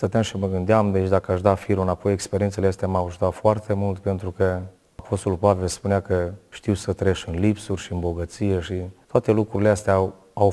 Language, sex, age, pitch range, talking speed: Romanian, male, 30-49, 95-105 Hz, 205 wpm